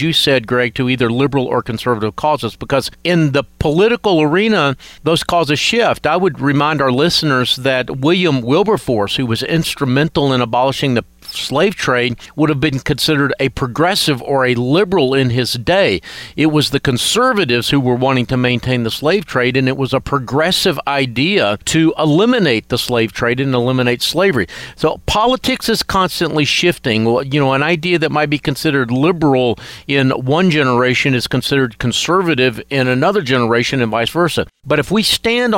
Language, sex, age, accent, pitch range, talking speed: English, male, 50-69, American, 125-165 Hz, 170 wpm